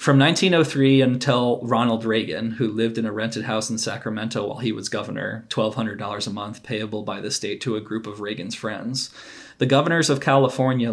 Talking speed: 185 wpm